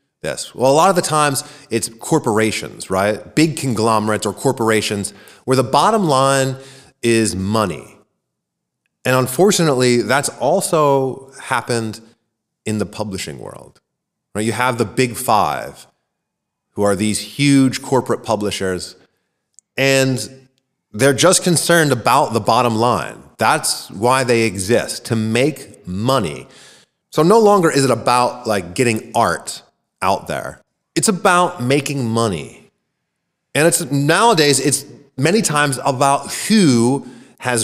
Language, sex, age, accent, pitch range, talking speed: English, male, 30-49, American, 115-150 Hz, 130 wpm